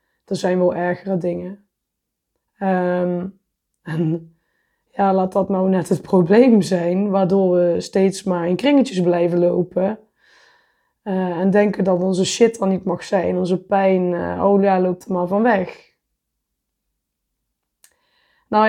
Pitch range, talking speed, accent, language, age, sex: 180-220 Hz, 140 wpm, Dutch, Dutch, 20-39, female